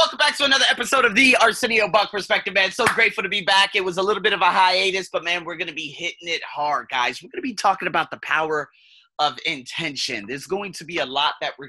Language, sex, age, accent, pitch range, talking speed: English, male, 30-49, American, 130-185 Hz, 265 wpm